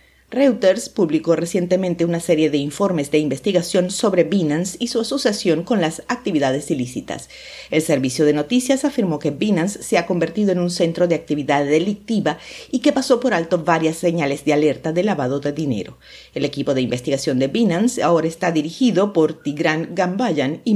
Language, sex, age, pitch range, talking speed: Spanish, female, 50-69, 155-200 Hz, 175 wpm